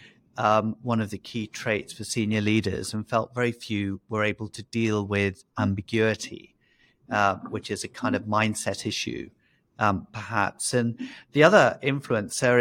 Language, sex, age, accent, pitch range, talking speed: English, male, 50-69, British, 105-120 Hz, 150 wpm